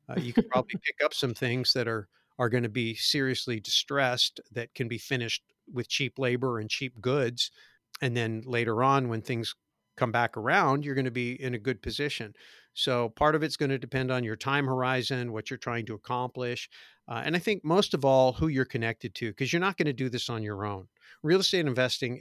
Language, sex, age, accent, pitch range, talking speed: English, male, 50-69, American, 115-135 Hz, 225 wpm